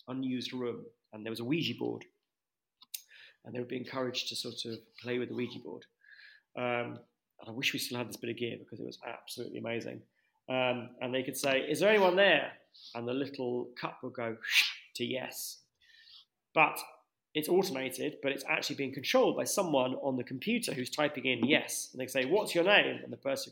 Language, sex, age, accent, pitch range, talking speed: English, male, 30-49, British, 120-145 Hz, 205 wpm